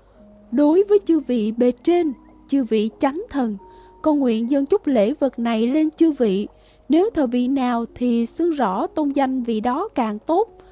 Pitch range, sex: 230-310 Hz, female